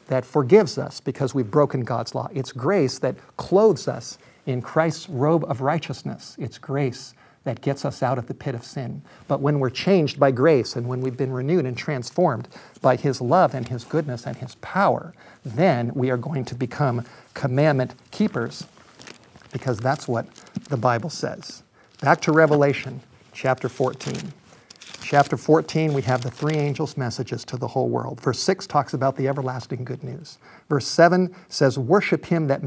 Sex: male